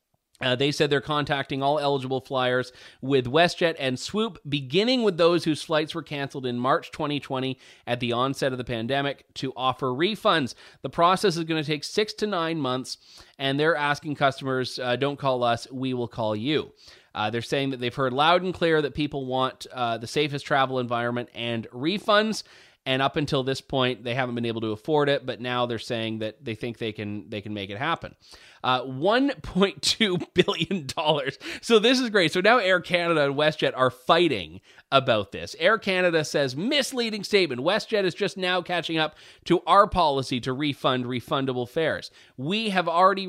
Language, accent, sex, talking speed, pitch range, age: English, American, male, 190 wpm, 125-175 Hz, 30-49